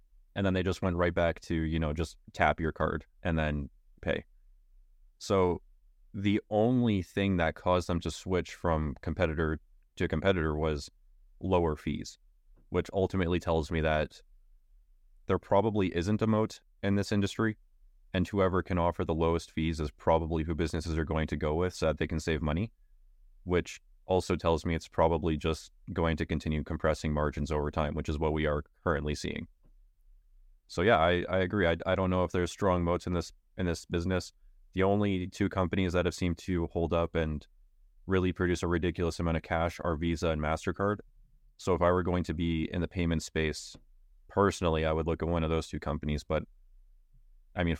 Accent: American